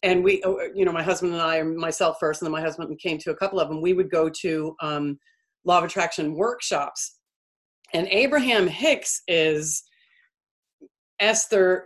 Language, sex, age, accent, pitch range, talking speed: English, female, 40-59, American, 160-200 Hz, 170 wpm